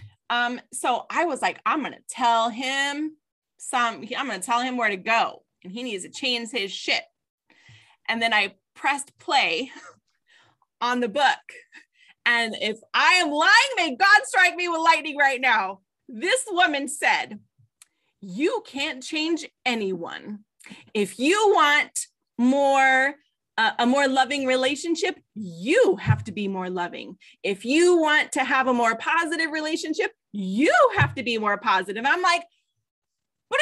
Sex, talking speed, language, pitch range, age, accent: female, 155 wpm, English, 225-345 Hz, 30-49, American